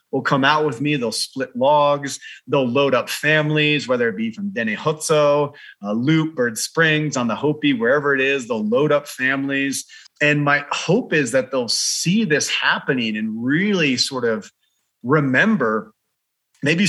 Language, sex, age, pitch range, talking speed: English, male, 30-49, 130-200 Hz, 165 wpm